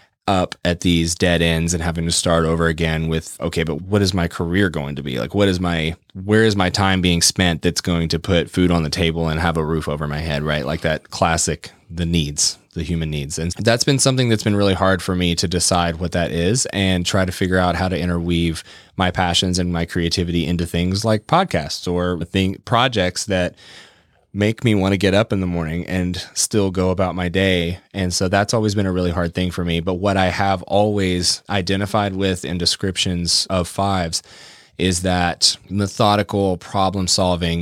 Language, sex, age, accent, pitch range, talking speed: English, male, 20-39, American, 85-95 Hz, 210 wpm